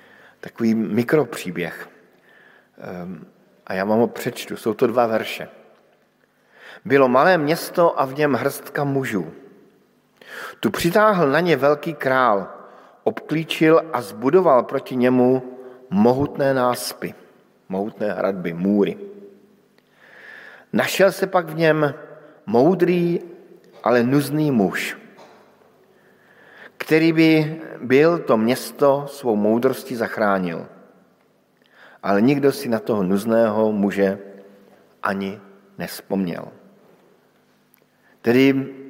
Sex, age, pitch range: male, 50-69, 110-150 Hz